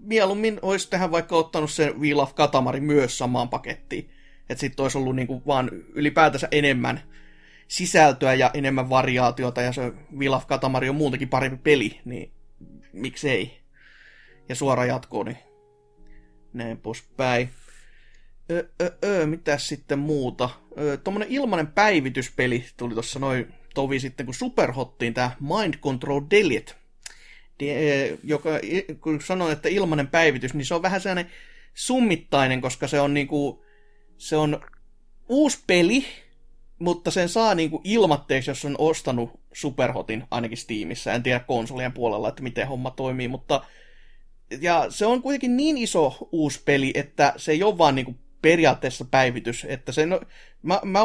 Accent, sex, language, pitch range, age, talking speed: native, male, Finnish, 130-165 Hz, 30-49, 135 wpm